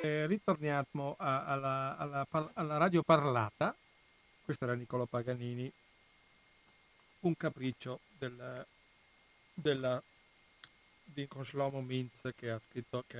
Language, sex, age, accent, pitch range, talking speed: Italian, male, 50-69, native, 120-150 Hz, 95 wpm